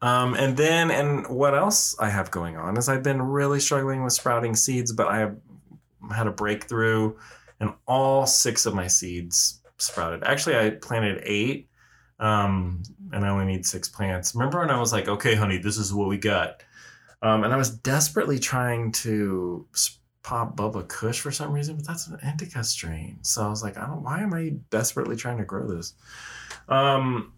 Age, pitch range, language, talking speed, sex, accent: 20-39, 100-130 Hz, English, 195 wpm, male, American